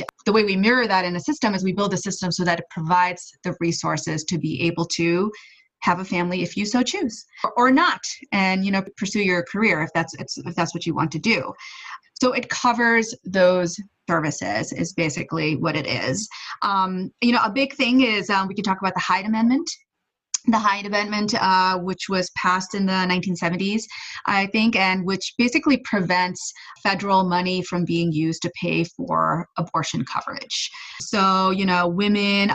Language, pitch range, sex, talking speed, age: English, 175-215 Hz, female, 190 wpm, 30-49